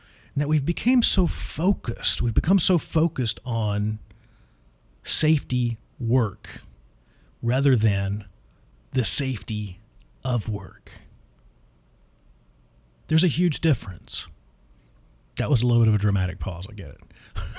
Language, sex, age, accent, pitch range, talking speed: English, male, 40-59, American, 90-145 Hz, 115 wpm